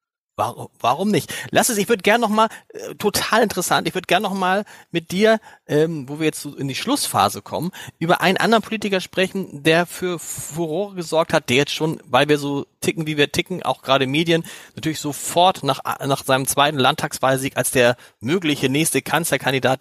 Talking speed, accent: 190 wpm, German